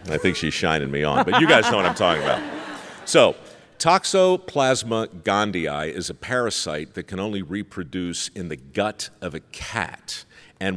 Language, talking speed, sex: English, 175 wpm, male